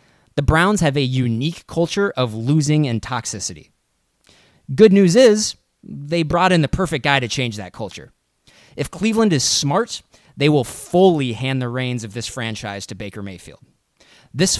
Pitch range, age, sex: 115-165 Hz, 20-39, male